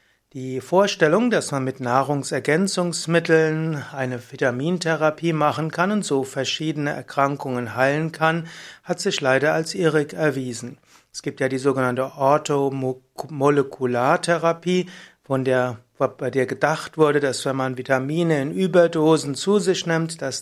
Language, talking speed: German, 125 wpm